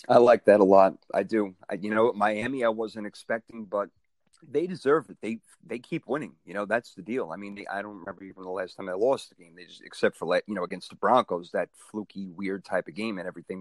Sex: male